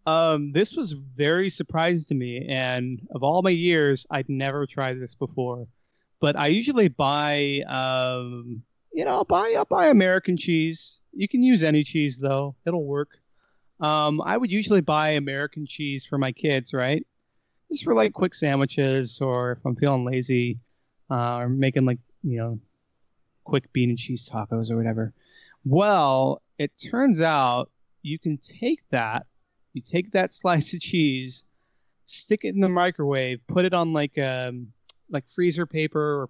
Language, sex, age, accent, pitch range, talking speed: English, male, 30-49, American, 130-165 Hz, 165 wpm